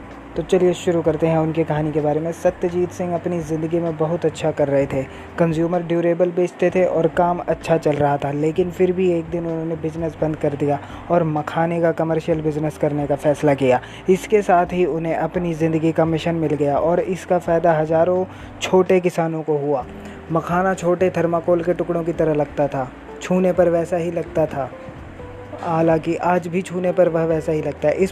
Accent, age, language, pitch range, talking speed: native, 20-39, Hindi, 155-180 Hz, 200 wpm